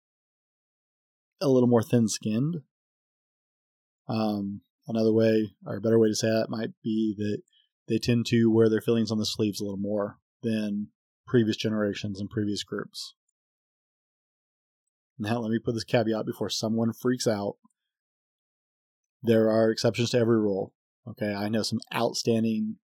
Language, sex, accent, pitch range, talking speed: English, male, American, 105-120 Hz, 145 wpm